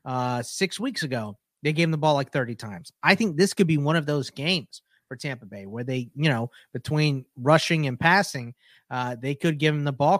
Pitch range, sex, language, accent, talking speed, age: 125-160 Hz, male, English, American, 230 wpm, 30-49